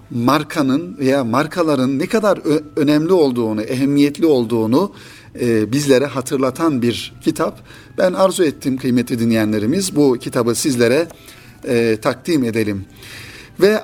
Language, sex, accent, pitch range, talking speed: Turkish, male, native, 120-160 Hz, 115 wpm